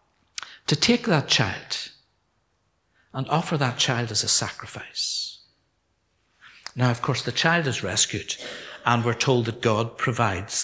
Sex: male